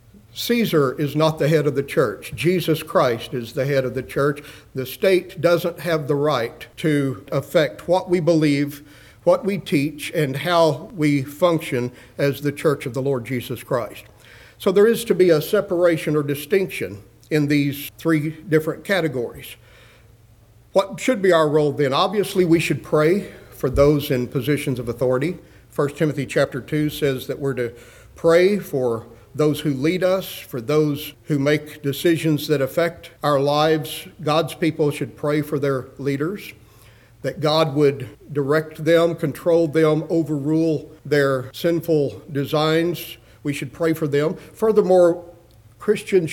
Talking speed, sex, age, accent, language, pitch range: 155 wpm, male, 50-69, American, English, 135-165 Hz